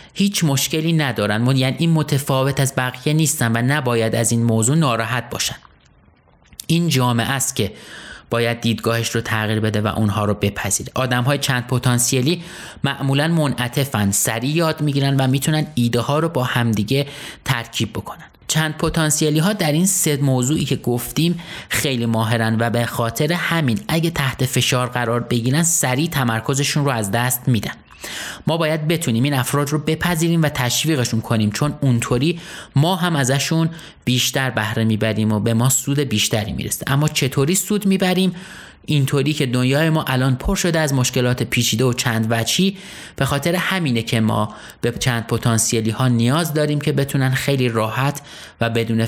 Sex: male